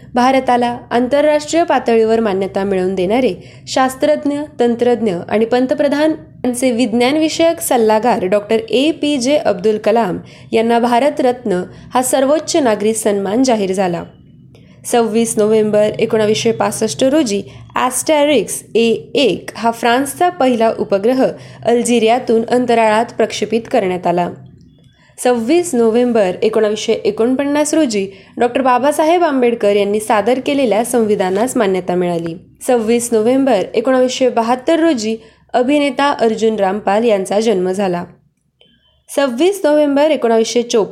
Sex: female